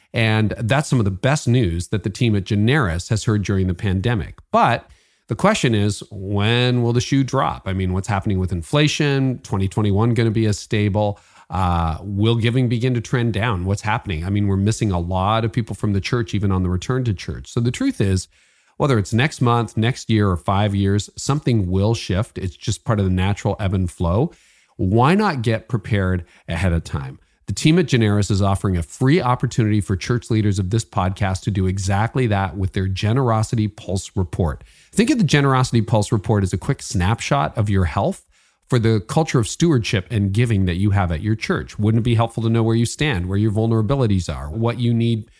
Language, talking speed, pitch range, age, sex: English, 215 wpm, 100-125 Hz, 40-59, male